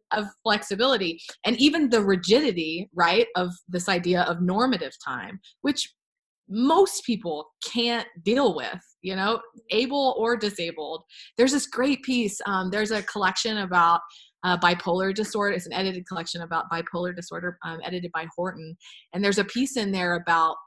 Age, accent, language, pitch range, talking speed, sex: 20-39, American, English, 170-225 Hz, 155 wpm, female